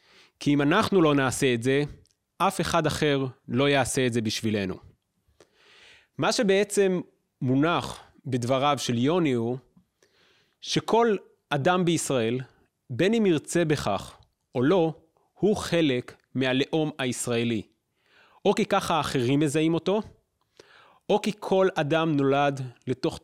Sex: male